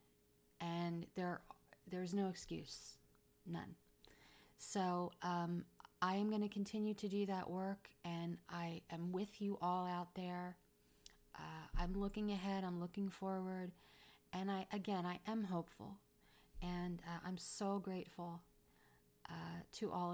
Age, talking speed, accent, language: 30-49, 135 wpm, American, English